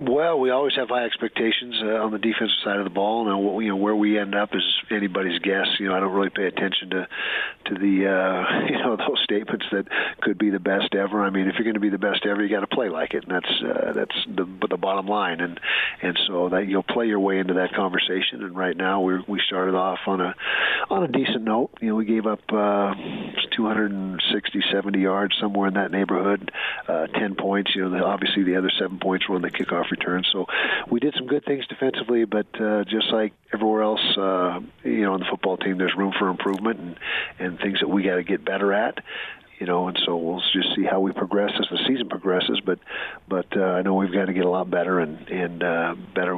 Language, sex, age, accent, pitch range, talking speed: English, male, 50-69, American, 90-105 Hz, 245 wpm